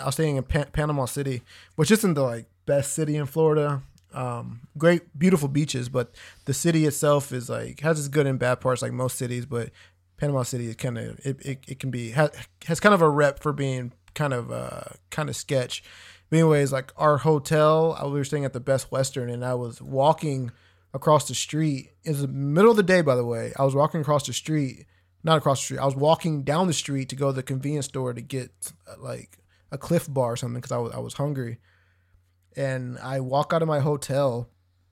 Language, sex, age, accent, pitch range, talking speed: English, male, 20-39, American, 120-150 Hz, 230 wpm